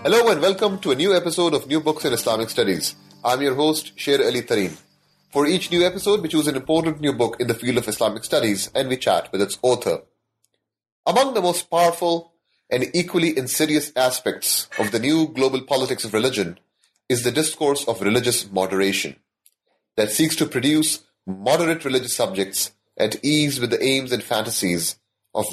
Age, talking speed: 30-49, 180 wpm